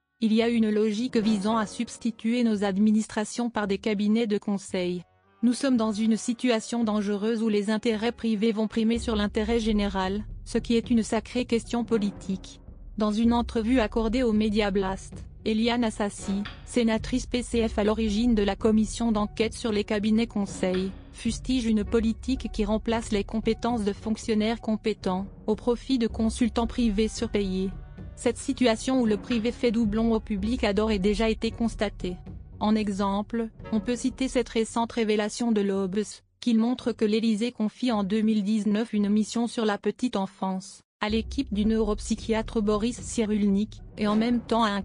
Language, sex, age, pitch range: French, female, 30-49, 210-230 Hz